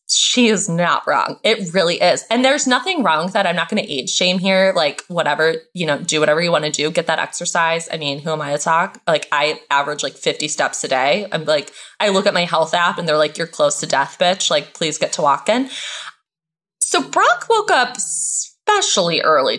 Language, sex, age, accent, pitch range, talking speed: English, female, 20-39, American, 160-225 Hz, 235 wpm